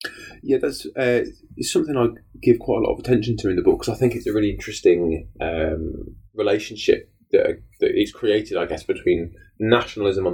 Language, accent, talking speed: English, British, 190 wpm